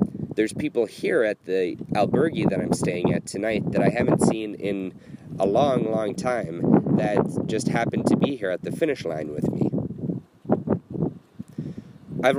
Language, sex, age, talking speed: English, male, 30-49, 160 wpm